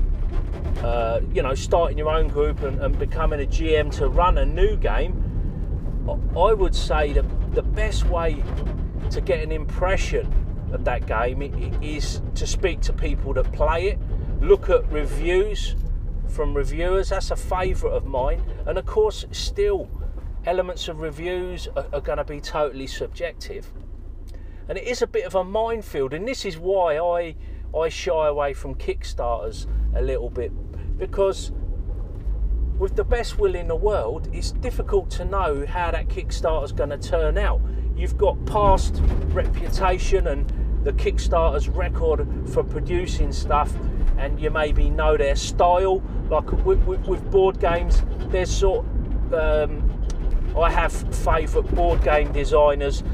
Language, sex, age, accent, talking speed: English, male, 40-59, British, 150 wpm